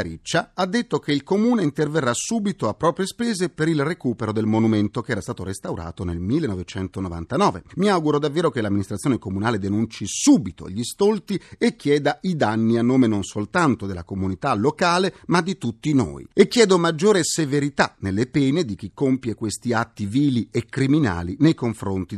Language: Italian